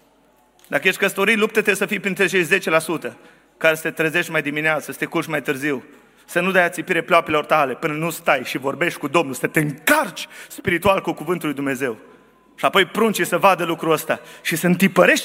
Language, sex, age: Romanian, male, 30-49